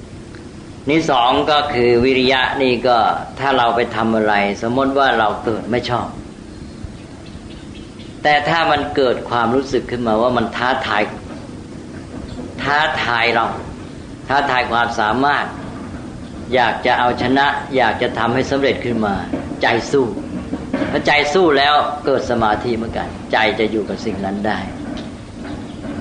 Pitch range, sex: 110-130 Hz, female